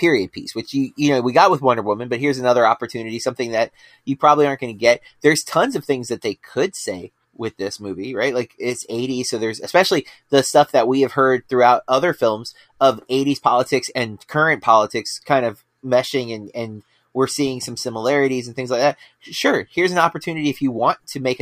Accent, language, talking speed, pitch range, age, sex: American, English, 220 wpm, 115-145 Hz, 30-49, male